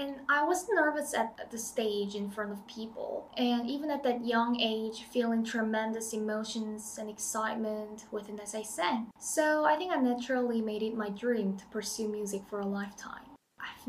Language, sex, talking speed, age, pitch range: English, female, 180 wpm, 10-29, 210-255 Hz